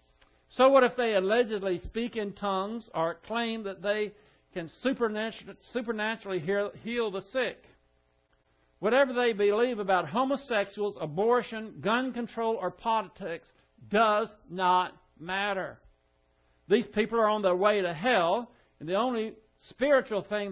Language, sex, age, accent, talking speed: English, male, 60-79, American, 125 wpm